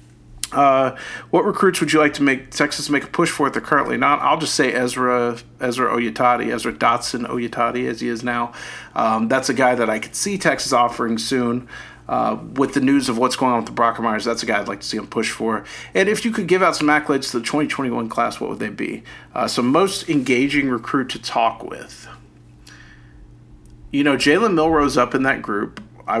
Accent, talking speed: American, 220 wpm